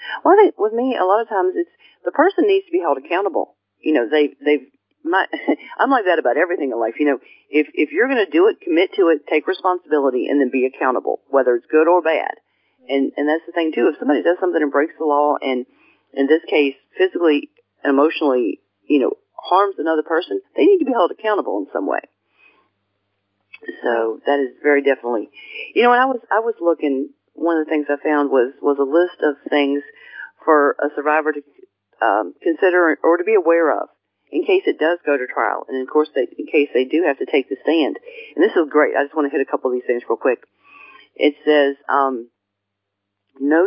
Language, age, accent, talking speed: English, 40-59, American, 225 wpm